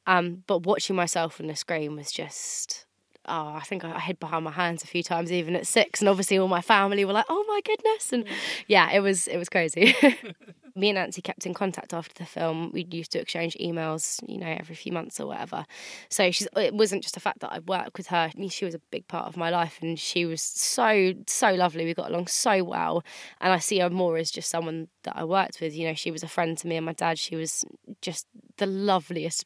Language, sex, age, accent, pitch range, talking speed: English, female, 20-39, British, 165-200 Hz, 245 wpm